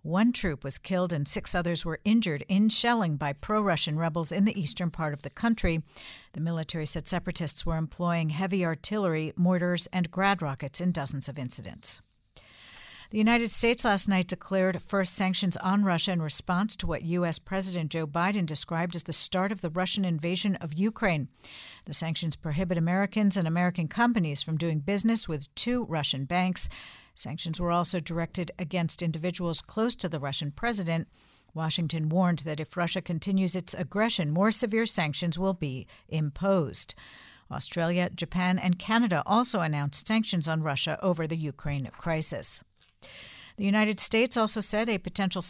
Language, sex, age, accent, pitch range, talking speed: English, female, 50-69, American, 160-200 Hz, 165 wpm